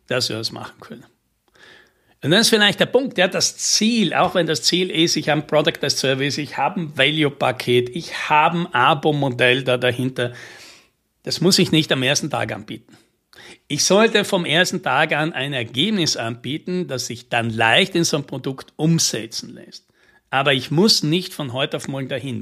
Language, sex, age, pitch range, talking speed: German, male, 60-79, 130-170 Hz, 190 wpm